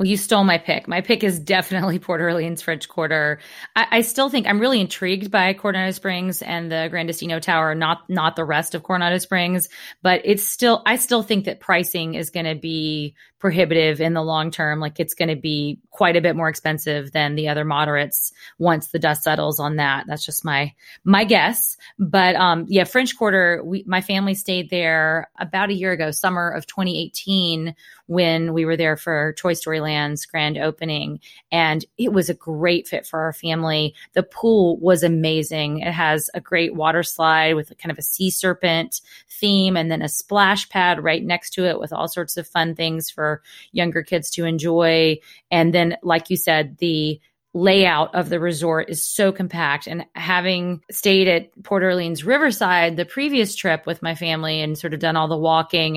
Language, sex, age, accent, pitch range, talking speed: English, female, 20-39, American, 160-185 Hz, 195 wpm